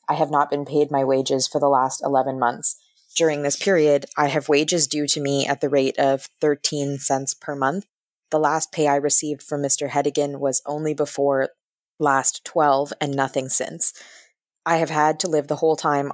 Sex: female